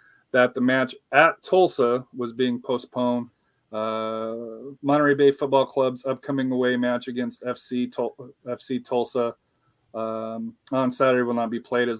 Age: 30-49